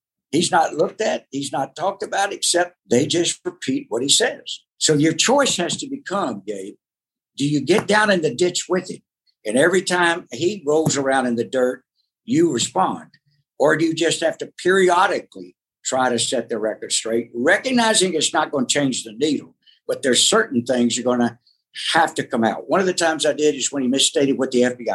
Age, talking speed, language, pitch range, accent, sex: 60-79, 210 wpm, English, 125-170 Hz, American, male